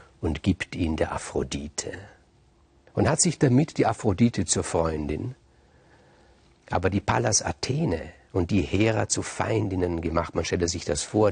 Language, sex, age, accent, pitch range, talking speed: German, male, 50-69, German, 95-125 Hz, 150 wpm